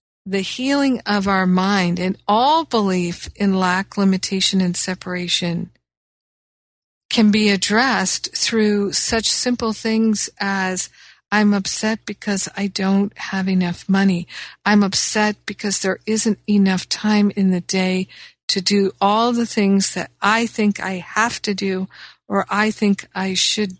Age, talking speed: 50-69, 140 wpm